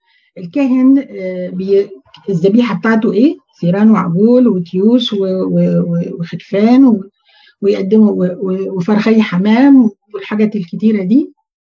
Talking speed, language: 95 wpm, Arabic